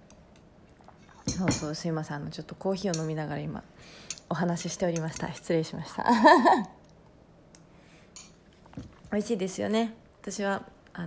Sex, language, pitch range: female, Japanese, 165-225 Hz